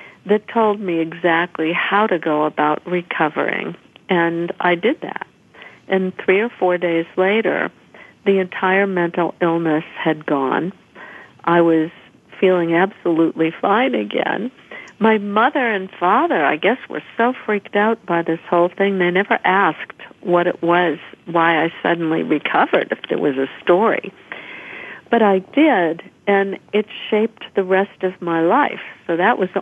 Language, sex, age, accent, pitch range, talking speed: English, female, 50-69, American, 165-200 Hz, 150 wpm